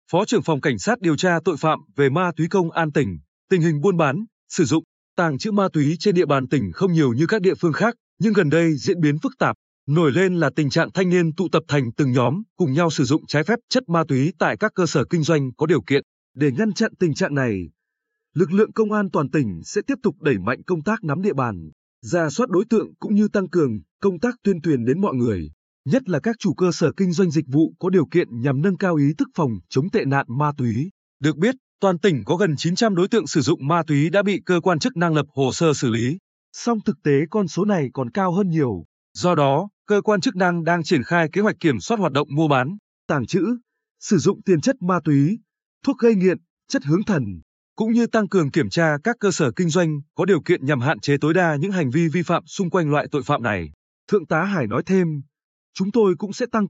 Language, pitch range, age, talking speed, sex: Vietnamese, 145-195 Hz, 20-39, 255 wpm, male